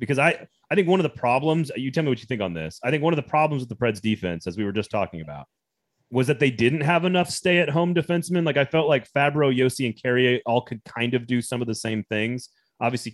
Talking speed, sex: 270 wpm, male